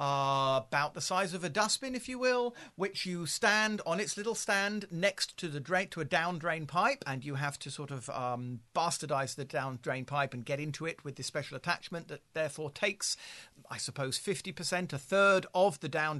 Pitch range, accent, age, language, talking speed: 145-200 Hz, British, 50-69, English, 215 wpm